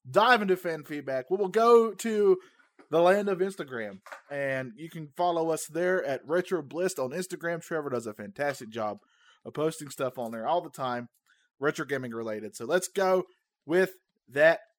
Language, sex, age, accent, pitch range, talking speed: English, male, 30-49, American, 140-215 Hz, 185 wpm